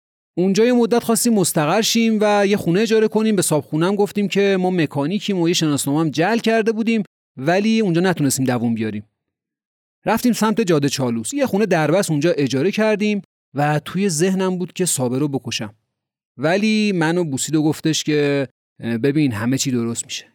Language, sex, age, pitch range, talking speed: Persian, male, 30-49, 125-185 Hz, 160 wpm